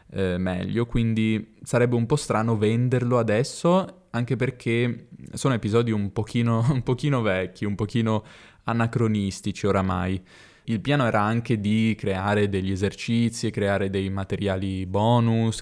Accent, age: native, 20-39